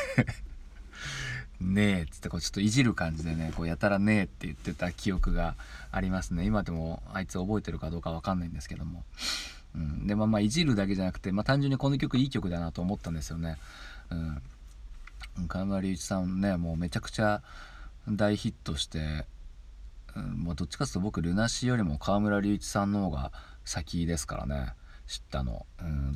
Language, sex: Japanese, male